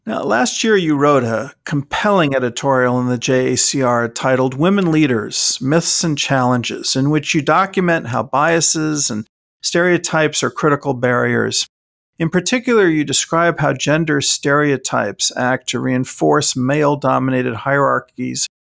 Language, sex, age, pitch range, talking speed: English, male, 50-69, 130-165 Hz, 130 wpm